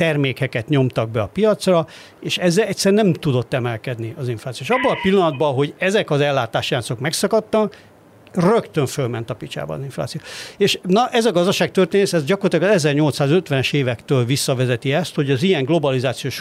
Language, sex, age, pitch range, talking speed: Hungarian, male, 50-69, 130-165 Hz, 160 wpm